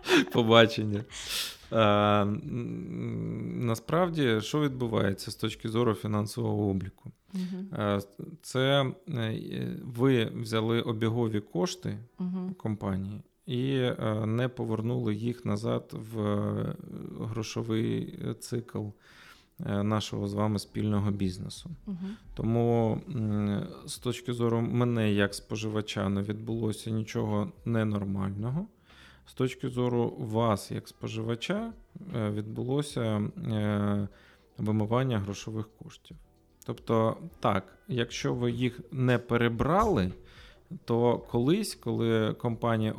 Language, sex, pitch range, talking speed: Ukrainian, male, 105-125 Hz, 85 wpm